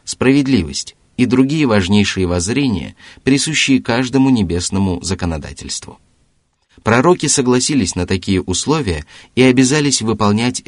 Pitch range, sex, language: 90-115 Hz, male, Russian